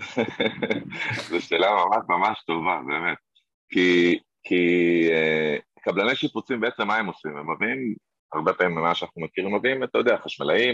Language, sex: Hebrew, male